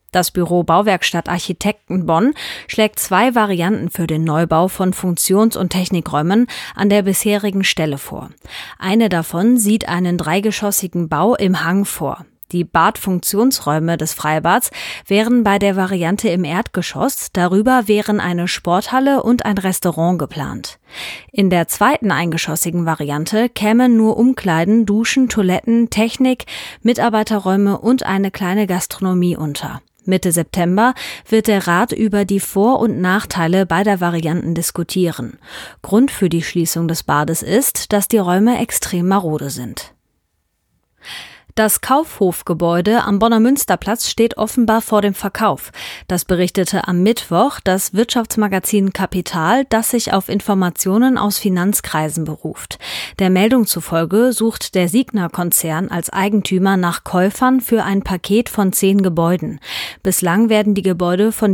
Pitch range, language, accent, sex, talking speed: 175-220 Hz, German, German, female, 130 wpm